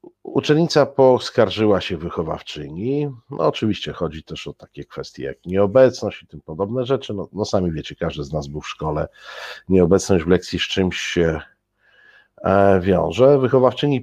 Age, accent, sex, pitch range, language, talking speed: 50-69, native, male, 90-115 Hz, Polish, 150 wpm